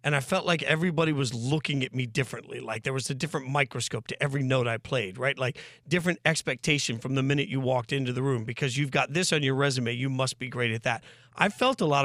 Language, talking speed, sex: English, 250 wpm, male